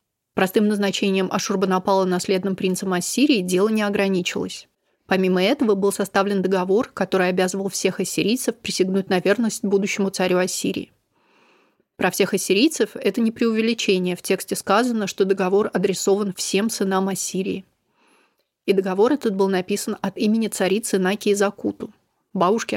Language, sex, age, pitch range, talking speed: Russian, female, 30-49, 190-220 Hz, 130 wpm